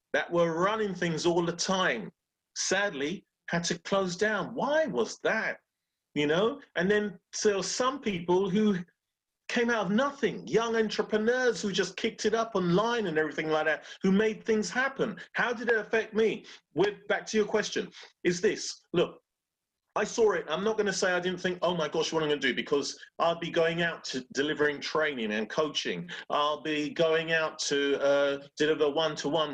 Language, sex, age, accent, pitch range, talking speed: English, male, 40-59, British, 155-215 Hz, 190 wpm